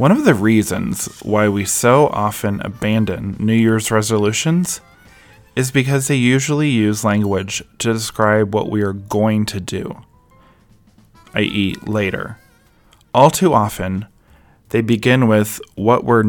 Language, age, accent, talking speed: English, 20-39, American, 135 wpm